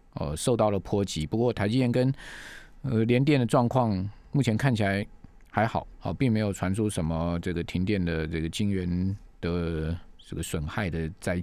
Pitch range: 95-125 Hz